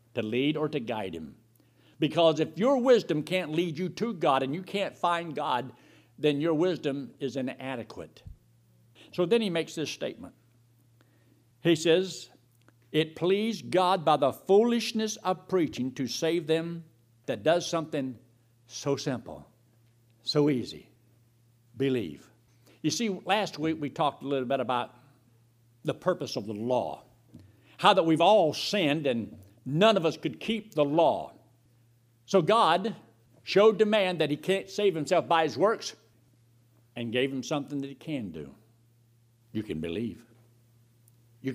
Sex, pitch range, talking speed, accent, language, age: male, 115-165 Hz, 150 wpm, American, English, 60-79